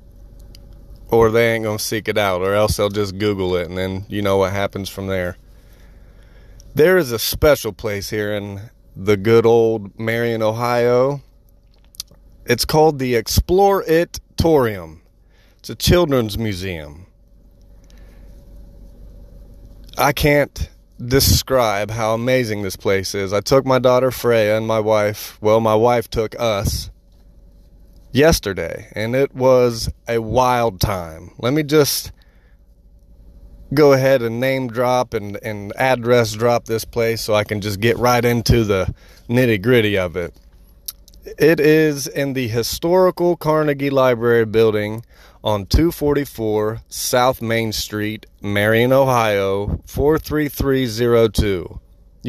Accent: American